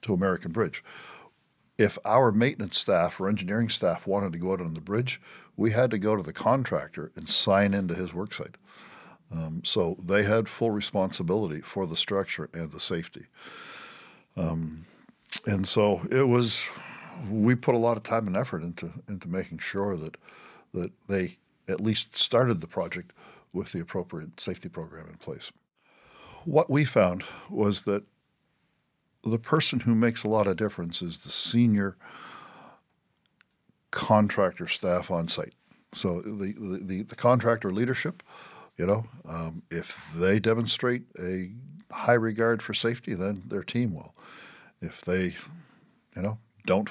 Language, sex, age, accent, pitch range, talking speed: English, male, 60-79, American, 95-115 Hz, 155 wpm